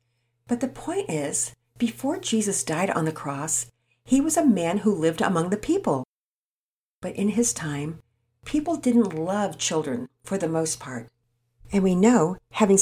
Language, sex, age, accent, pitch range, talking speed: English, female, 50-69, American, 150-235 Hz, 165 wpm